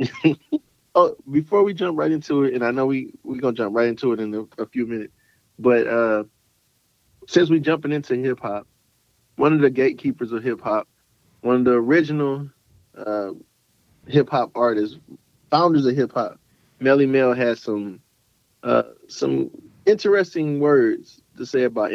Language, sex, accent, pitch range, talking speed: English, male, American, 110-140 Hz, 155 wpm